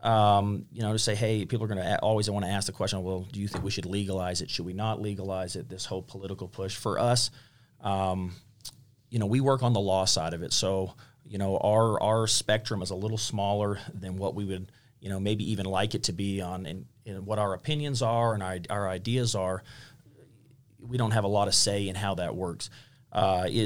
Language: English